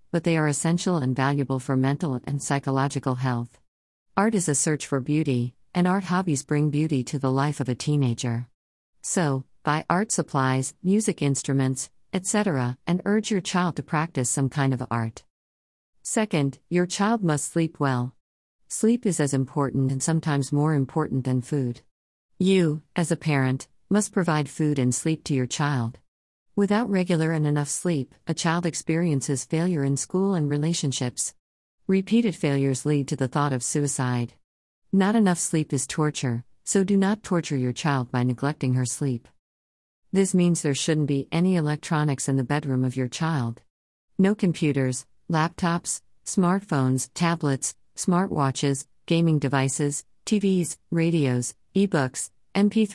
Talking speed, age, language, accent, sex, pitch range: 150 wpm, 50-69, English, American, female, 130-170 Hz